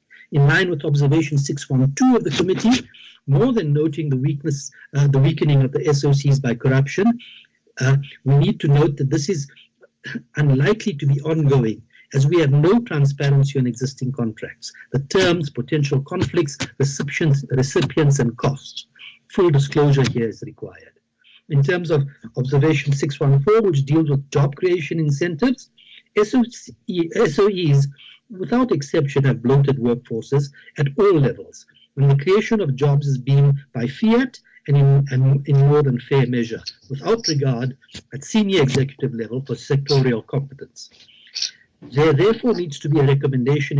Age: 60-79